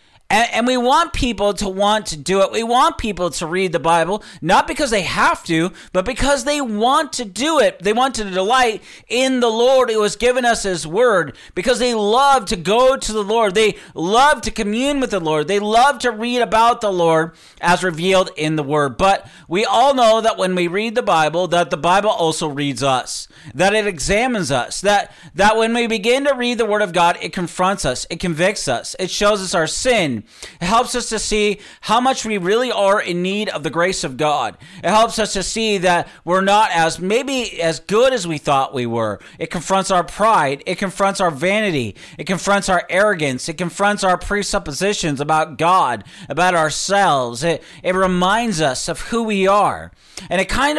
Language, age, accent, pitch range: English, 40-59, American, 175-225 Hz